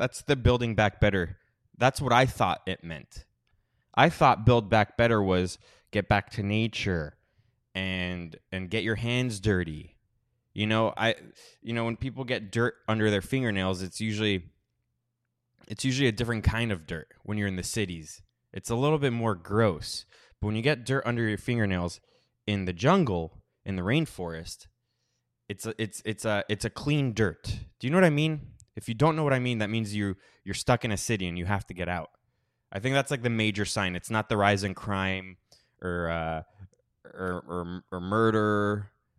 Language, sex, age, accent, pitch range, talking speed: English, male, 20-39, American, 95-120 Hz, 195 wpm